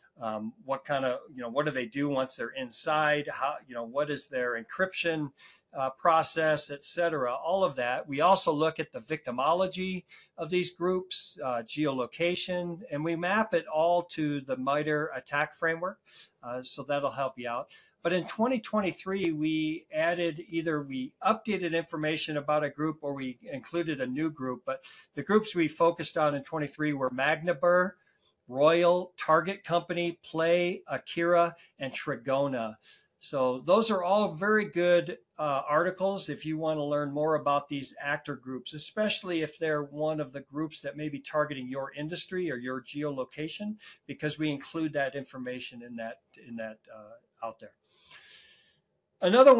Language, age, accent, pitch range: English, 50-69, American, 140-180 Hz